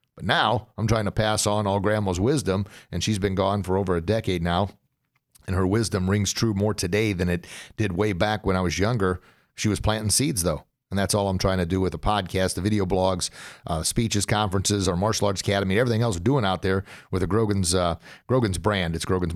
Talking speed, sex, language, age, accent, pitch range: 235 wpm, male, English, 40-59, American, 95-110 Hz